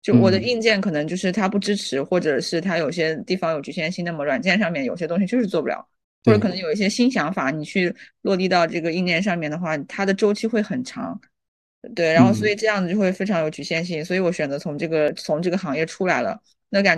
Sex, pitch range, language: female, 165-210 Hz, Chinese